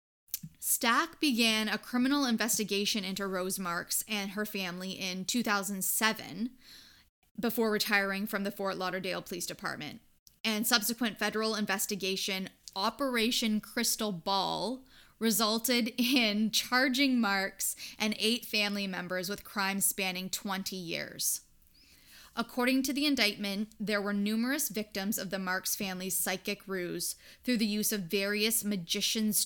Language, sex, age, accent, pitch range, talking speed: English, female, 10-29, American, 195-230 Hz, 125 wpm